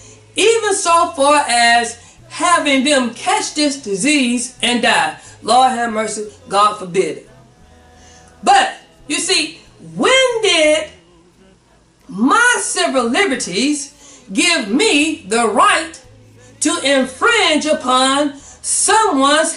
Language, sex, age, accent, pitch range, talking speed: English, female, 40-59, American, 200-315 Hz, 100 wpm